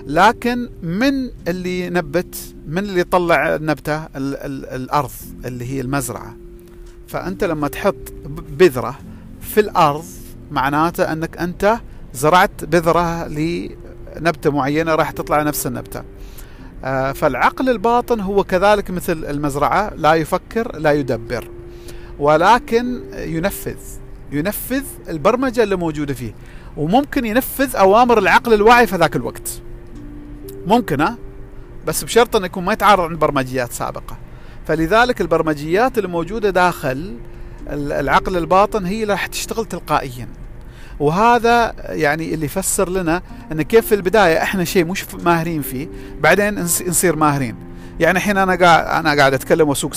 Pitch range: 135-195 Hz